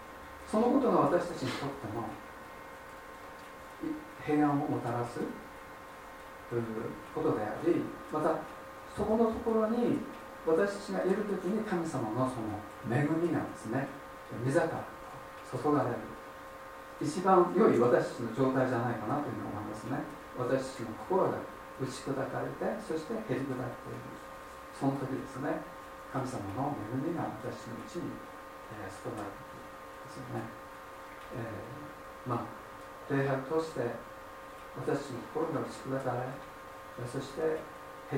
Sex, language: male, Japanese